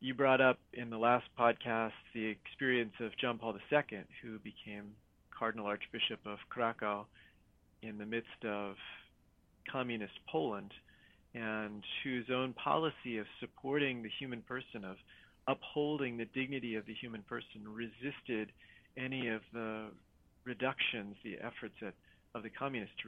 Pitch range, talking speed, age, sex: 105-125 Hz, 140 wpm, 40-59, male